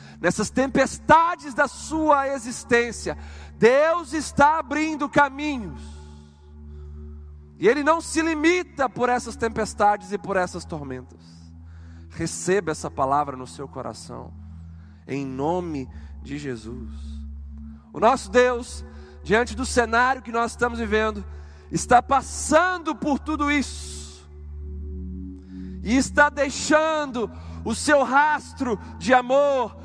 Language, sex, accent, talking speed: Portuguese, male, Brazilian, 110 wpm